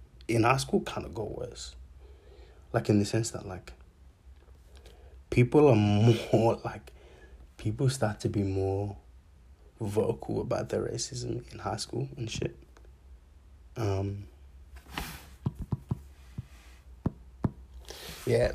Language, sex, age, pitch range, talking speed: English, male, 20-39, 70-115 Hz, 105 wpm